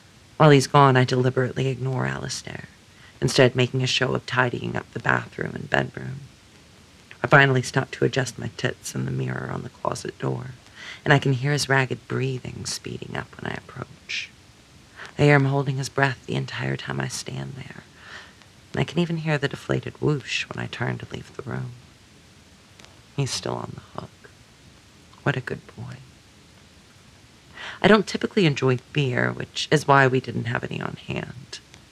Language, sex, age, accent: English, female, 40-59, American